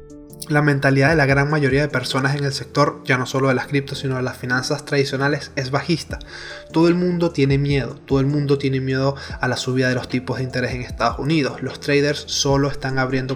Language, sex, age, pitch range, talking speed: Spanish, male, 20-39, 135-160 Hz, 225 wpm